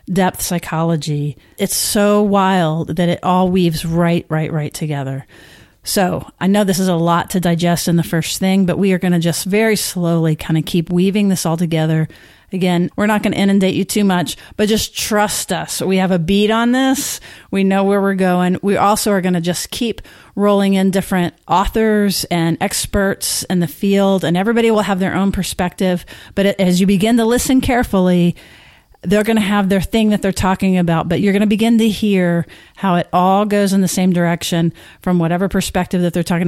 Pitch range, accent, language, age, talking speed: 175-205 Hz, American, English, 40-59, 205 wpm